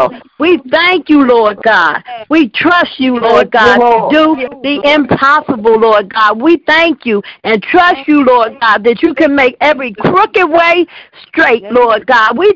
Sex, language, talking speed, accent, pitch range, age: female, English, 165 wpm, American, 260-340 Hz, 50-69